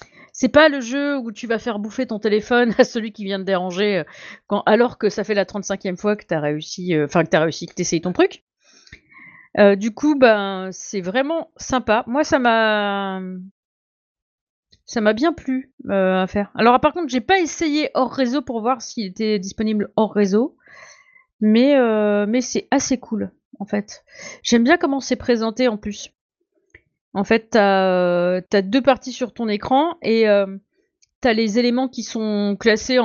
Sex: female